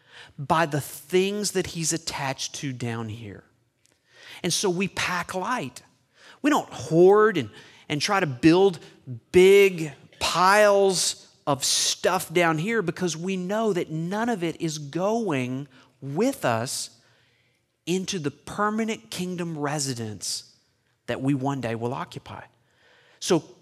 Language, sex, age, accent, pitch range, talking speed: English, male, 40-59, American, 130-185 Hz, 130 wpm